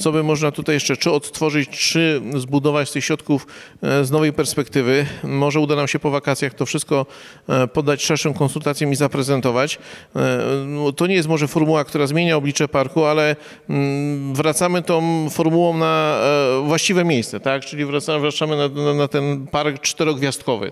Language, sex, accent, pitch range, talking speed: Polish, male, native, 145-160 Hz, 155 wpm